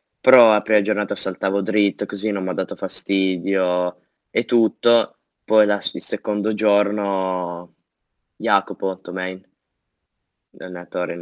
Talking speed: 125 wpm